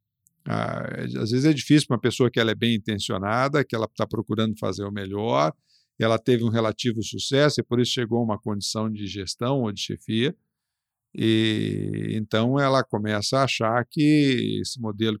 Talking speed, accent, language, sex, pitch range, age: 180 wpm, Brazilian, Portuguese, male, 110-130 Hz, 50-69